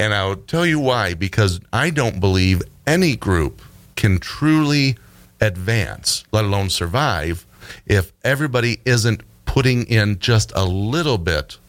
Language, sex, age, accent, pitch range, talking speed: English, male, 40-59, American, 90-120 Hz, 135 wpm